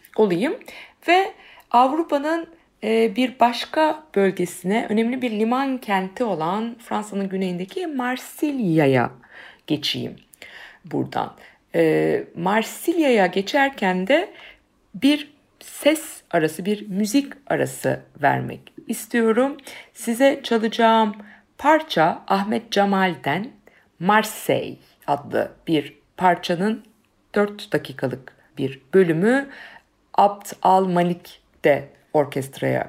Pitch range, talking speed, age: 160-235 Hz, 80 wpm, 60-79